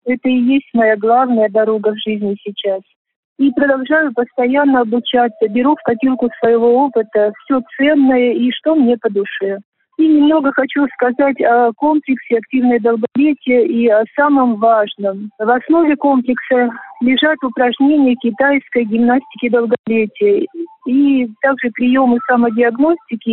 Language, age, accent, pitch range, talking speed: Russian, 50-69, native, 225-275 Hz, 125 wpm